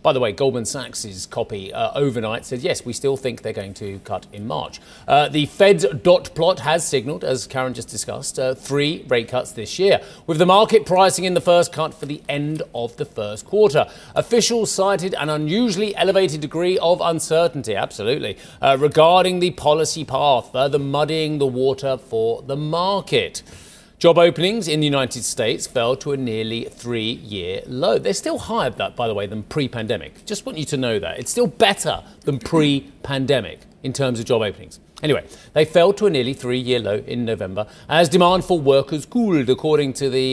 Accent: British